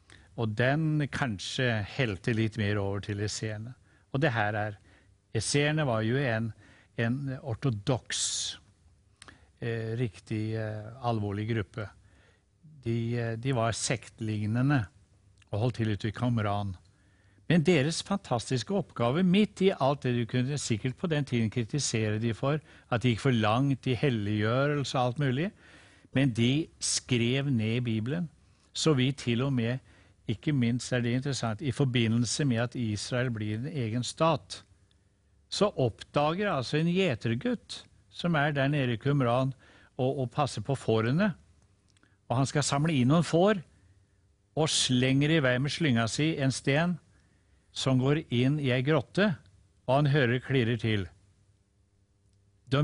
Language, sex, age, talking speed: English, male, 60-79, 145 wpm